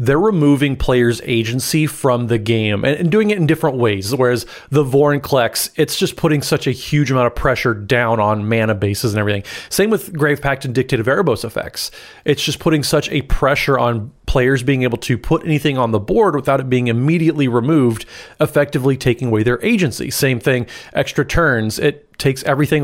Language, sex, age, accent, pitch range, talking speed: English, male, 30-49, American, 120-150 Hz, 190 wpm